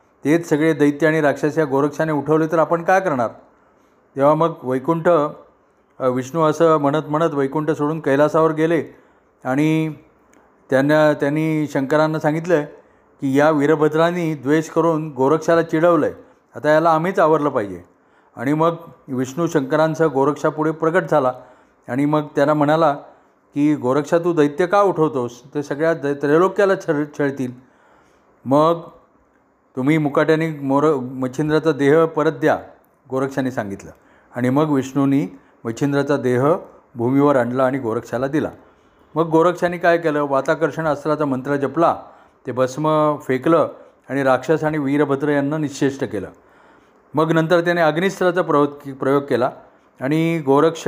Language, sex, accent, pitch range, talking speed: Marathi, male, native, 135-160 Hz, 130 wpm